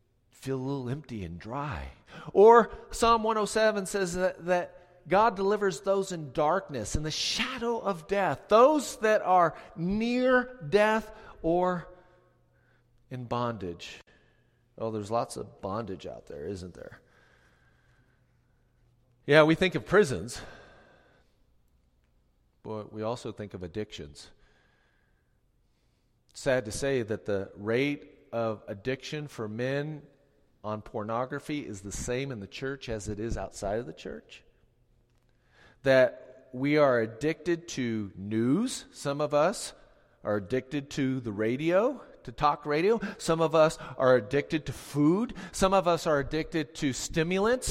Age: 40-59